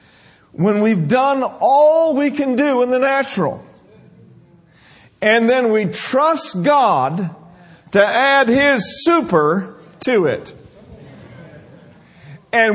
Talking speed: 105 wpm